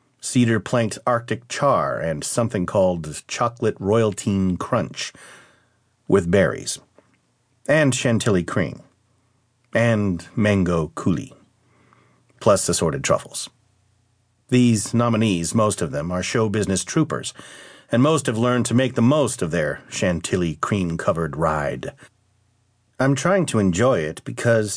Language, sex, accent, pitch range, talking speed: English, male, American, 95-120 Hz, 110 wpm